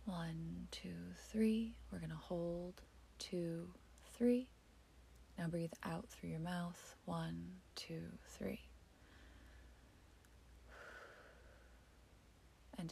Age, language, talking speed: 30-49, English, 85 wpm